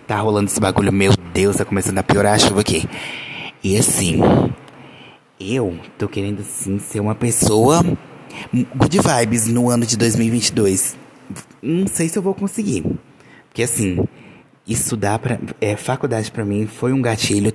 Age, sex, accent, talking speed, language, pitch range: 20-39, male, Brazilian, 155 wpm, Portuguese, 105-130 Hz